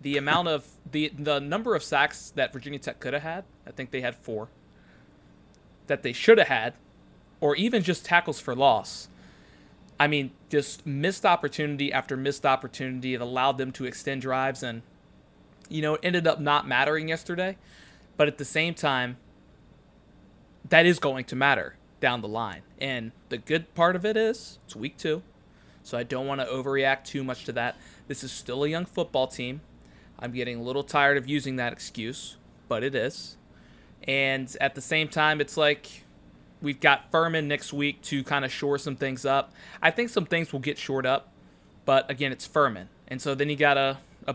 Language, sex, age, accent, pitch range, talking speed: English, male, 20-39, American, 130-155 Hz, 190 wpm